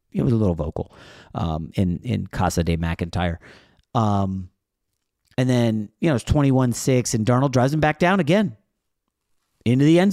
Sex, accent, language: male, American, English